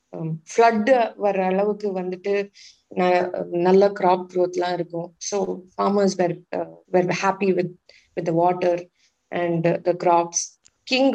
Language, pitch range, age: Tamil, 175-210 Hz, 20-39